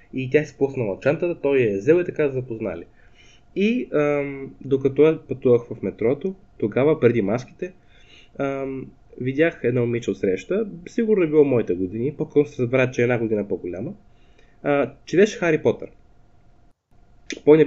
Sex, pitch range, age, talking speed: male, 120-160 Hz, 20-39, 165 wpm